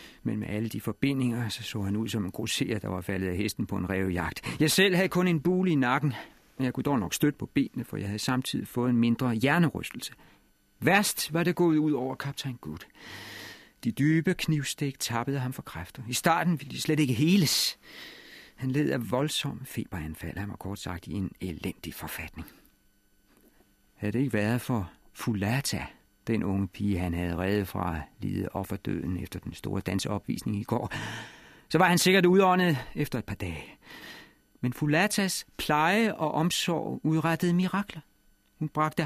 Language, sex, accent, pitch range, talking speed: Danish, male, native, 100-155 Hz, 180 wpm